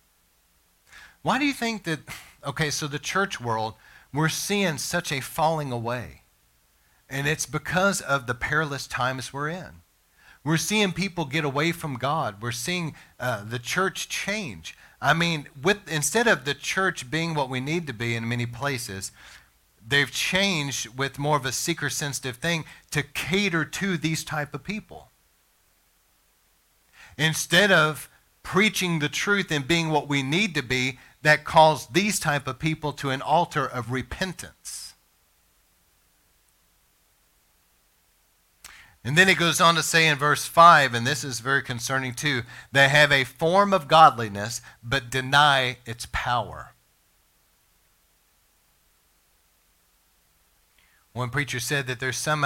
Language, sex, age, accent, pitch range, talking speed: English, male, 40-59, American, 115-160 Hz, 140 wpm